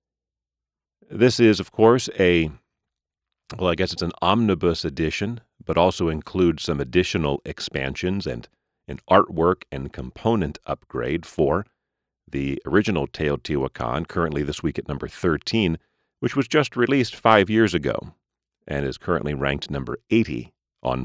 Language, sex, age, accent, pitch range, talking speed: English, male, 40-59, American, 70-100 Hz, 135 wpm